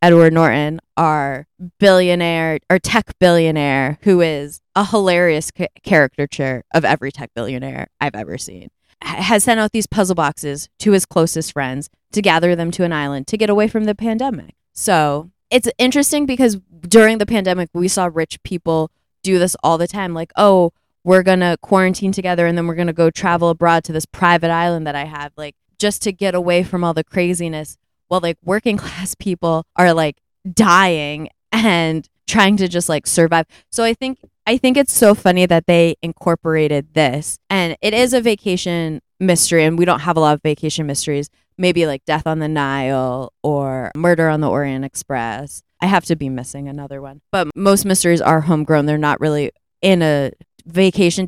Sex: female